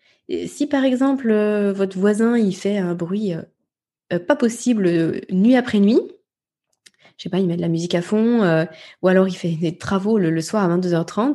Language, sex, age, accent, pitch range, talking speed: French, female, 20-39, French, 190-245 Hz, 205 wpm